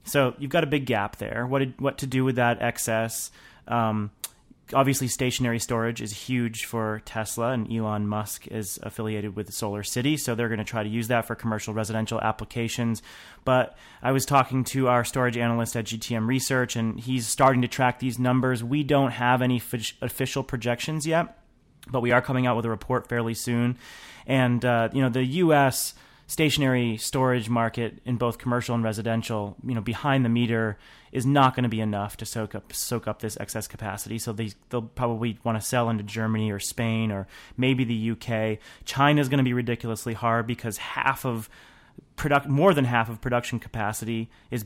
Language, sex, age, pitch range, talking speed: English, male, 30-49, 110-130 Hz, 195 wpm